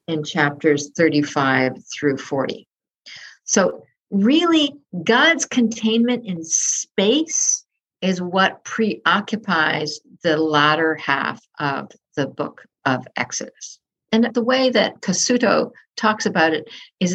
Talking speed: 110 wpm